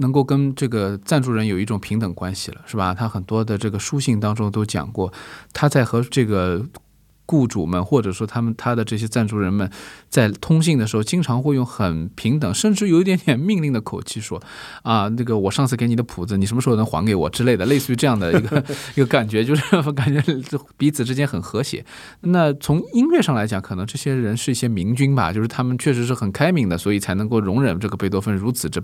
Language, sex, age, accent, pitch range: Chinese, male, 20-39, native, 105-150 Hz